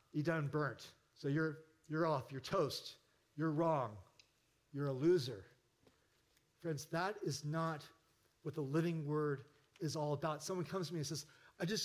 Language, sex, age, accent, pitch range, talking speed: English, male, 40-59, American, 150-230 Hz, 165 wpm